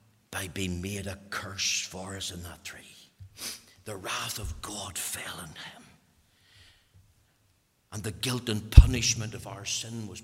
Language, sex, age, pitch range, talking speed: English, male, 60-79, 105-130 Hz, 150 wpm